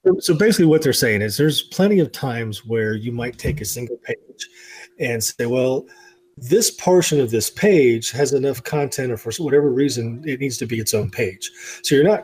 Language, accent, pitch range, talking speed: English, American, 110-145 Hz, 205 wpm